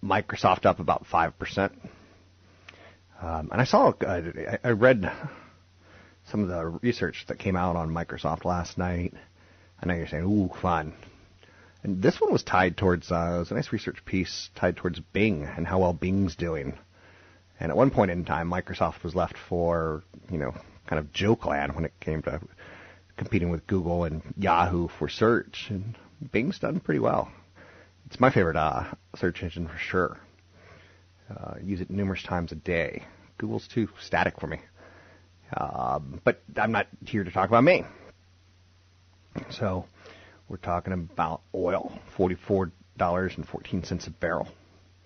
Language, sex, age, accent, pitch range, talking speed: English, male, 30-49, American, 85-95 Hz, 155 wpm